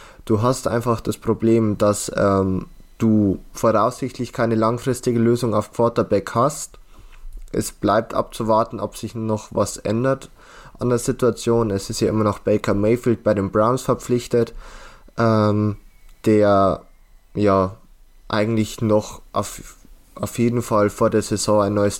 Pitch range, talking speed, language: 105-115 Hz, 140 wpm, German